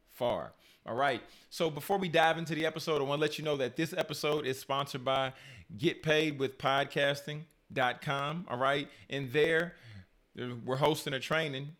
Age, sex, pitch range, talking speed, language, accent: 30-49, male, 125-155 Hz, 175 wpm, English, American